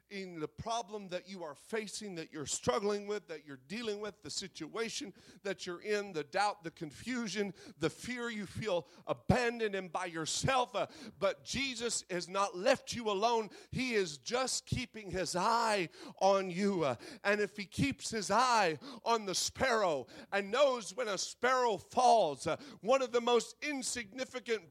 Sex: male